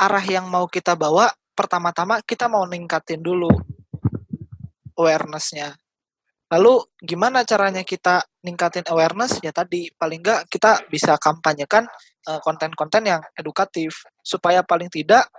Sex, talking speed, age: male, 115 wpm, 20-39